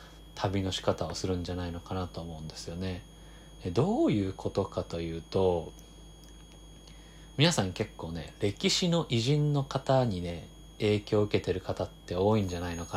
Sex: male